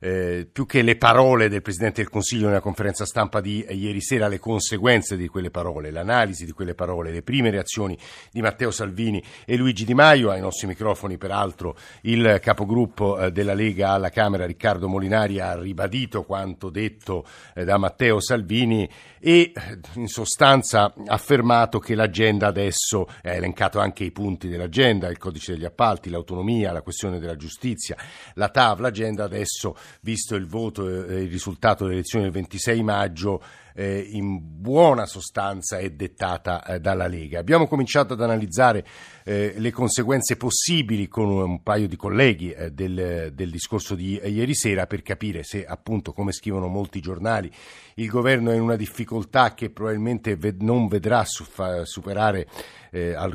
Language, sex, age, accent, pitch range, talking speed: Italian, male, 50-69, native, 95-115 Hz, 155 wpm